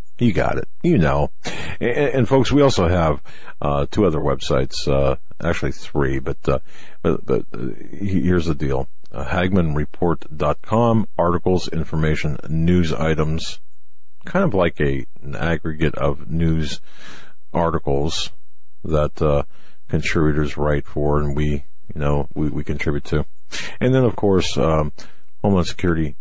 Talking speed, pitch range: 140 wpm, 70-80 Hz